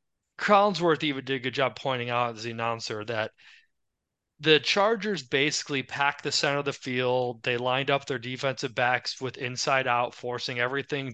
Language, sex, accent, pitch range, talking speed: English, male, American, 125-160 Hz, 170 wpm